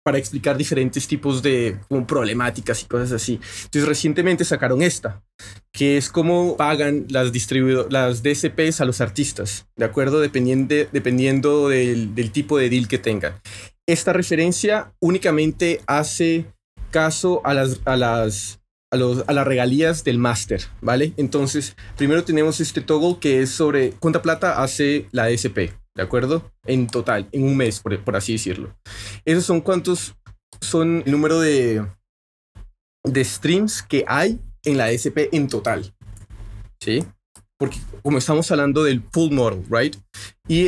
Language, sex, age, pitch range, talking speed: Spanish, male, 30-49, 110-155 Hz, 150 wpm